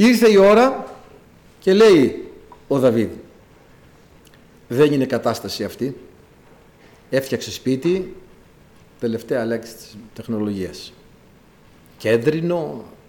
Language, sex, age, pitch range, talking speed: Greek, male, 50-69, 110-165 Hz, 85 wpm